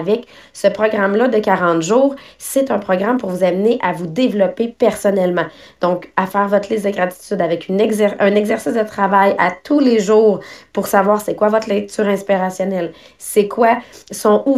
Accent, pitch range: Canadian, 180-220 Hz